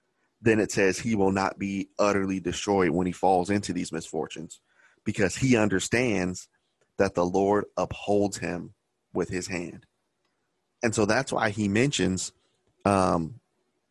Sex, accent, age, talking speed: male, American, 30-49, 140 wpm